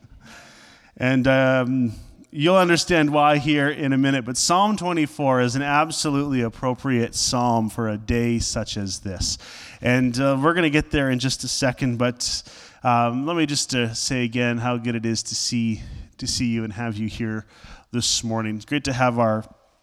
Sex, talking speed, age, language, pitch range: male, 190 wpm, 30-49, English, 115-145 Hz